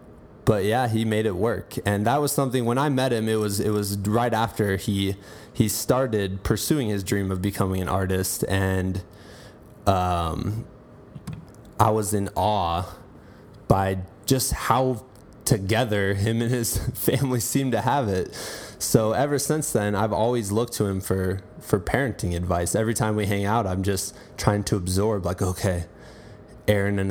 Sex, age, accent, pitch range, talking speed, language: male, 20-39, American, 100-115 Hz, 165 wpm, English